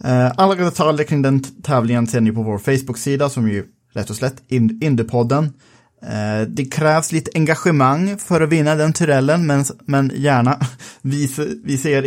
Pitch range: 120-155 Hz